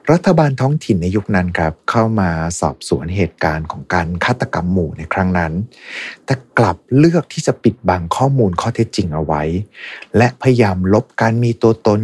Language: Thai